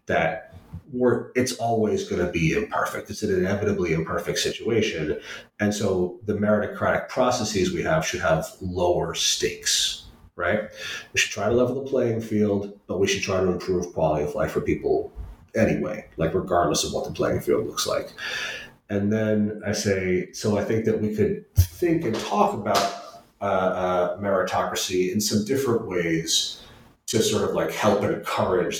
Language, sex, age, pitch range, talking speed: English, male, 30-49, 90-115 Hz, 165 wpm